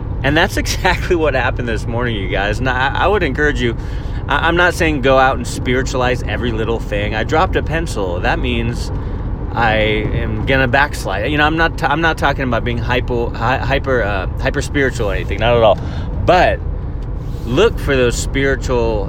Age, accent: 30-49, American